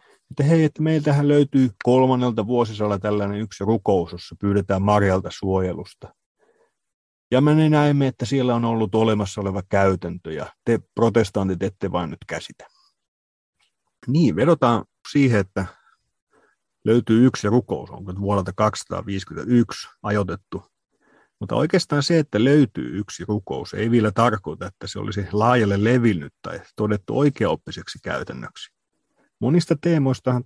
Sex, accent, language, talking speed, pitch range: male, native, Finnish, 120 wpm, 95-130 Hz